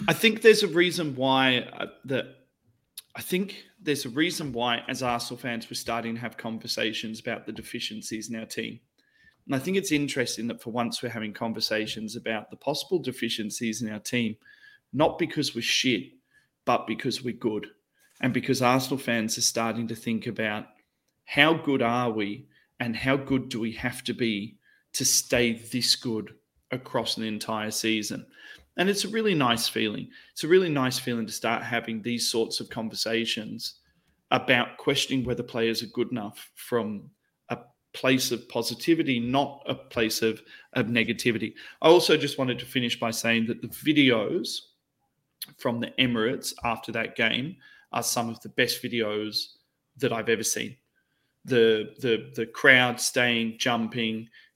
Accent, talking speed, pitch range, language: Australian, 165 wpm, 115-135 Hz, English